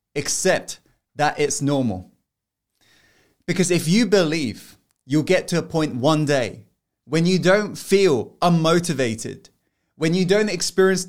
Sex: male